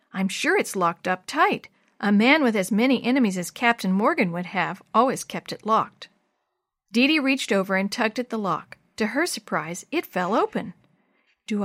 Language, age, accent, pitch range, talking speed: English, 50-69, American, 195-260 Hz, 185 wpm